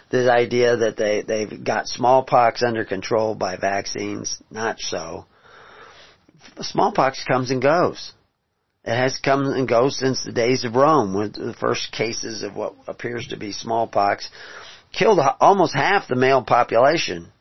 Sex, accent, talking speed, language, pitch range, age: male, American, 140 wpm, English, 110-135 Hz, 40-59